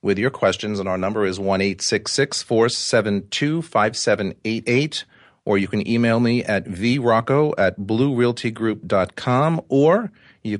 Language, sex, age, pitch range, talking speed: English, male, 40-59, 105-140 Hz, 110 wpm